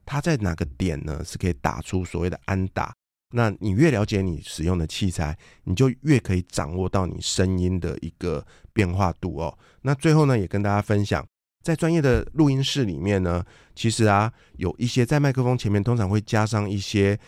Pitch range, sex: 90-120 Hz, male